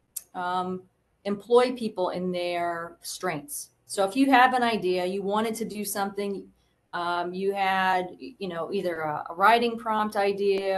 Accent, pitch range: American, 175-205 Hz